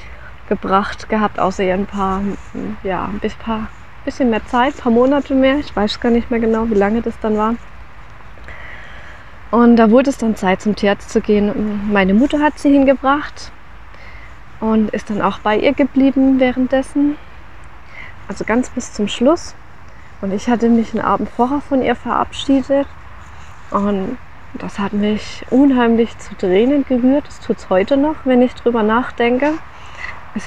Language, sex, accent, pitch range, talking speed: German, female, German, 205-255 Hz, 165 wpm